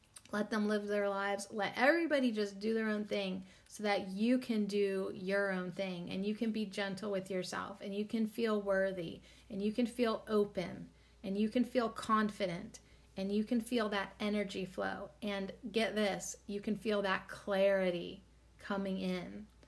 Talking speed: 180 wpm